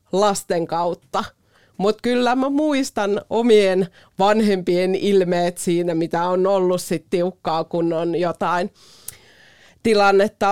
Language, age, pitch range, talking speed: Finnish, 30-49, 175-210 Hz, 110 wpm